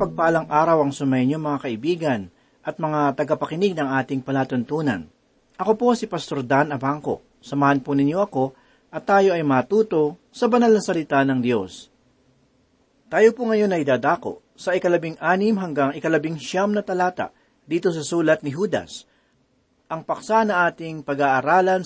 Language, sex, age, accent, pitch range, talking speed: Filipino, male, 40-59, native, 145-205 Hz, 150 wpm